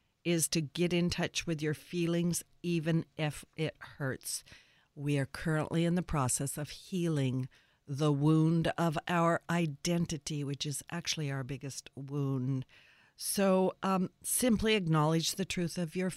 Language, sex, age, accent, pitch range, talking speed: English, female, 50-69, American, 145-175 Hz, 145 wpm